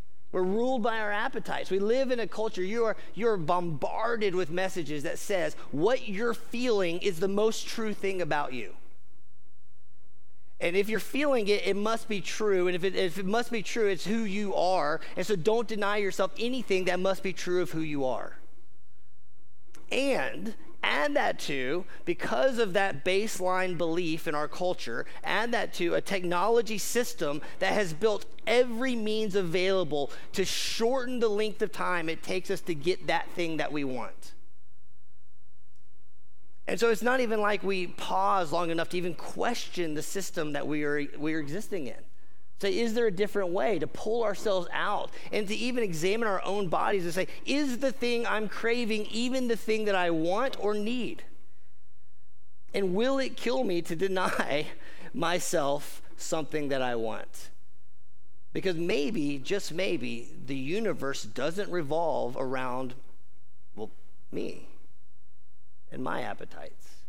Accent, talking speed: American, 165 wpm